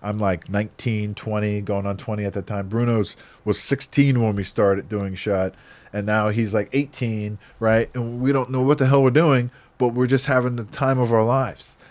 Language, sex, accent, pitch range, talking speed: English, male, American, 100-130 Hz, 210 wpm